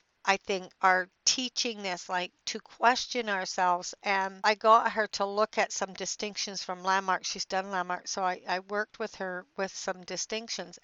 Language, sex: English, female